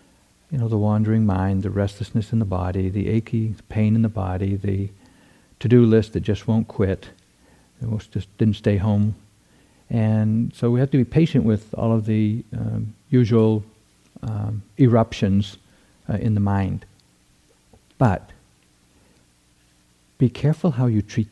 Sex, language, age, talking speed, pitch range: male, English, 60-79, 150 wpm, 100-115 Hz